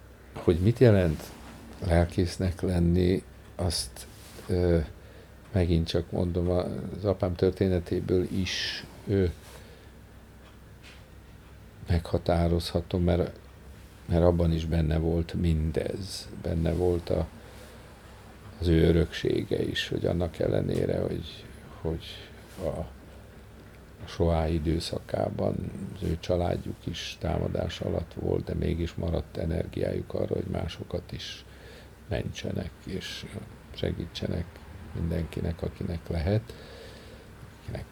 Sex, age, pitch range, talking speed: male, 50-69, 85-100 Hz, 95 wpm